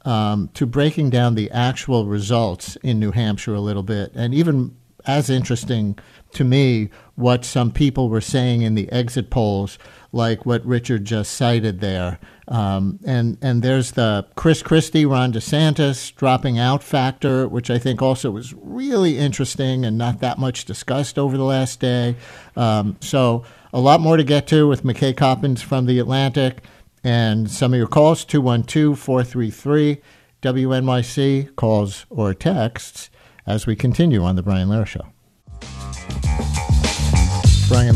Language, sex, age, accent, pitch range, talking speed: English, male, 50-69, American, 110-135 Hz, 150 wpm